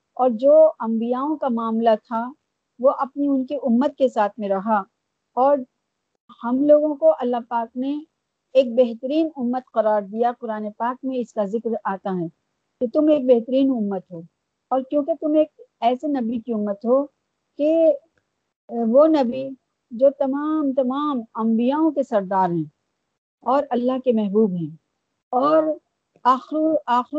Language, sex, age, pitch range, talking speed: Urdu, female, 50-69, 225-285 Hz, 150 wpm